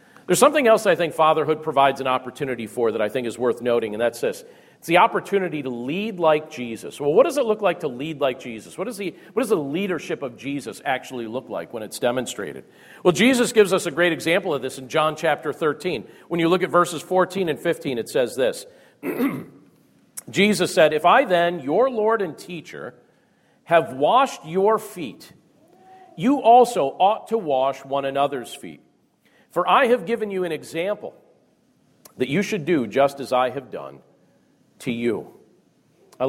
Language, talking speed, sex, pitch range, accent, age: English, 185 wpm, male, 135-205 Hz, American, 40-59